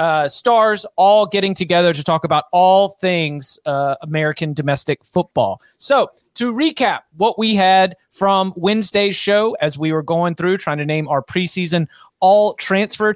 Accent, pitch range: American, 155-200 Hz